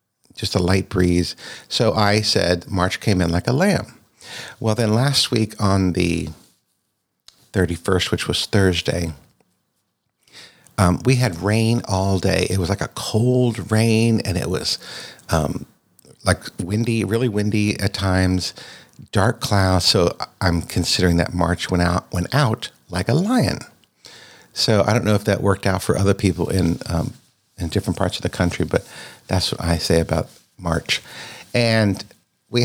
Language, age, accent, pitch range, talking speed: English, 60-79, American, 90-115 Hz, 160 wpm